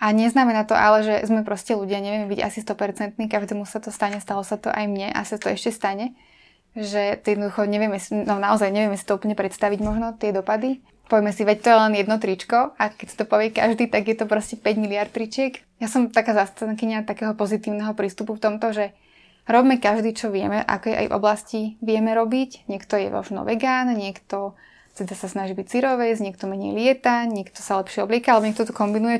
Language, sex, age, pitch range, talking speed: Slovak, female, 20-39, 205-225 Hz, 200 wpm